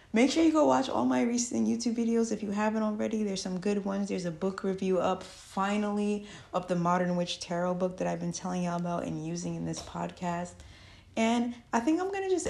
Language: English